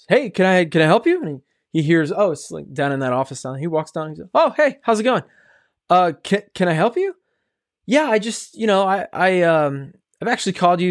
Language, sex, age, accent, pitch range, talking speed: English, male, 20-39, American, 125-185 Hz, 265 wpm